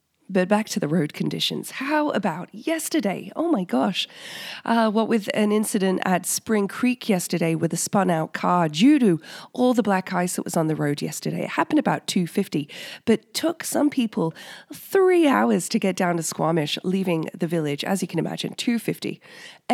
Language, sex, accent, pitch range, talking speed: English, female, Australian, 170-225 Hz, 180 wpm